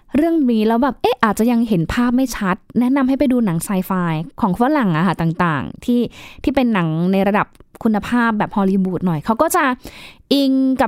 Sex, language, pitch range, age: female, Thai, 195-270 Hz, 20-39